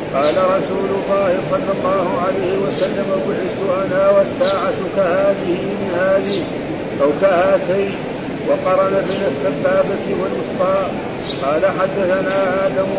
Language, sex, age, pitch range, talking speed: Arabic, male, 50-69, 185-195 Hz, 100 wpm